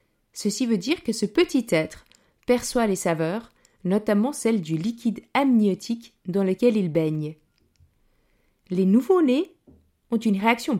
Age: 30-49